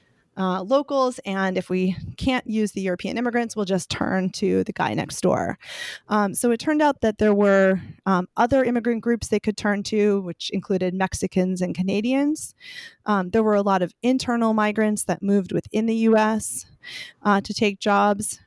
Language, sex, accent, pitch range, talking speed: English, female, American, 190-240 Hz, 180 wpm